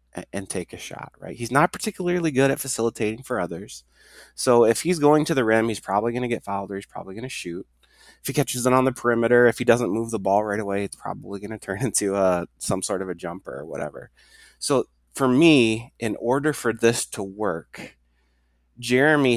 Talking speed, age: 220 wpm, 20-39